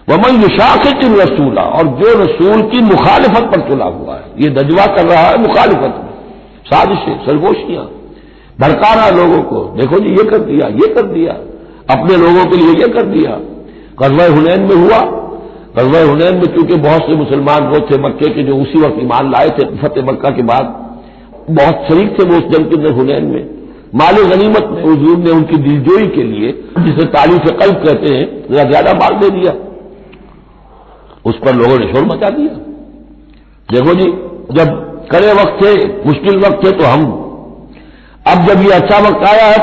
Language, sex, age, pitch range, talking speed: Hindi, male, 60-79, 155-200 Hz, 175 wpm